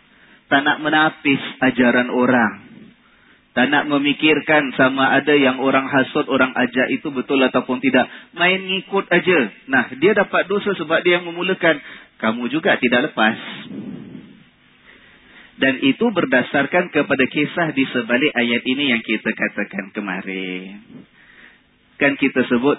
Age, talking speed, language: 30-49, 130 wpm, Indonesian